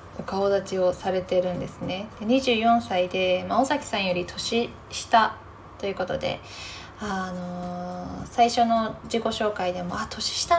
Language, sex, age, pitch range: Japanese, female, 20-39, 180-245 Hz